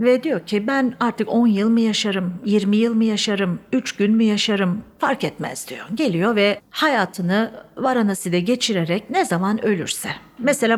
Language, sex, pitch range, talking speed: Turkish, female, 185-235 Hz, 165 wpm